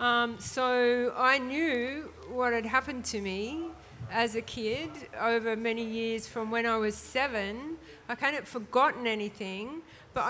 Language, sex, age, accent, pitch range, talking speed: English, female, 50-69, Australian, 220-250 Hz, 150 wpm